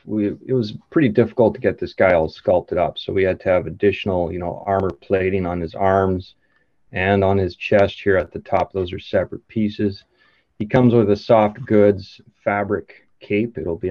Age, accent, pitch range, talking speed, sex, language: 30-49, American, 95-105 Hz, 205 wpm, male, English